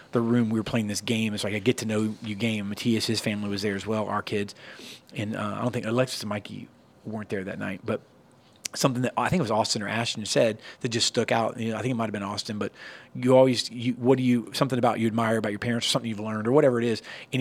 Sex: male